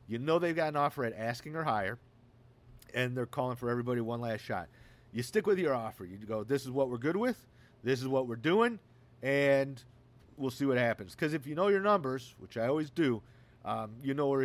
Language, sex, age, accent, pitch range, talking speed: English, male, 40-59, American, 120-155 Hz, 230 wpm